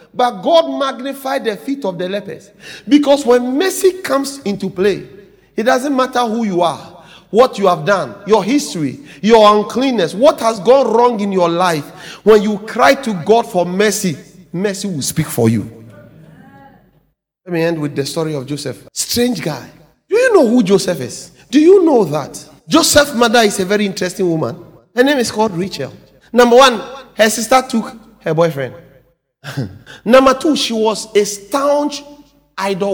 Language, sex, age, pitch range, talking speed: English, male, 40-59, 165-255 Hz, 170 wpm